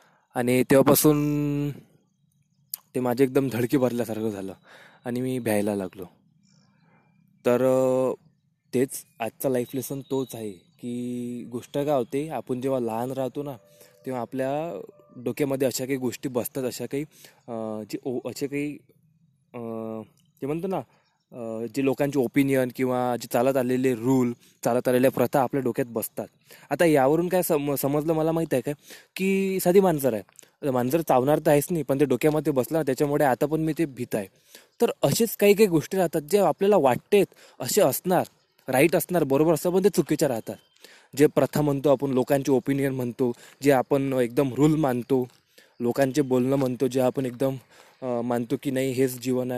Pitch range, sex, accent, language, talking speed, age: 125-155 Hz, male, native, Marathi, 130 wpm, 20-39